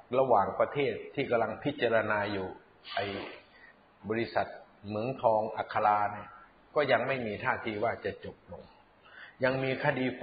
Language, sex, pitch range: Thai, male, 110-140 Hz